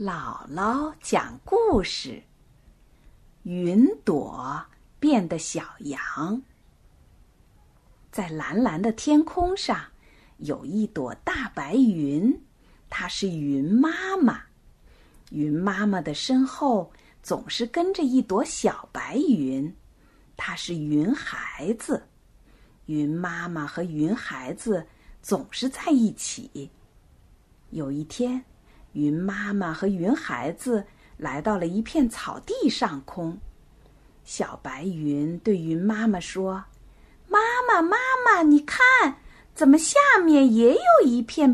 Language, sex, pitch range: Chinese, female, 165-260 Hz